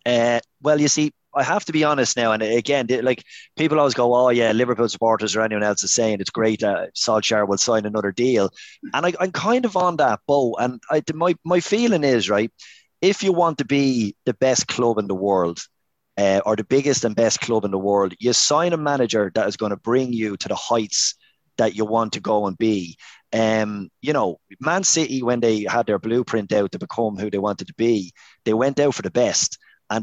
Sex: male